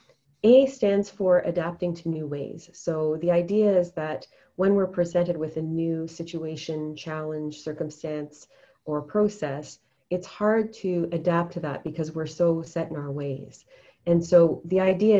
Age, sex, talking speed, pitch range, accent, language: 30-49, female, 160 wpm, 145-175 Hz, American, English